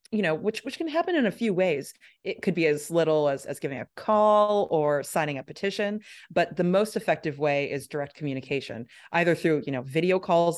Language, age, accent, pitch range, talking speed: English, 30-49, American, 150-185 Hz, 215 wpm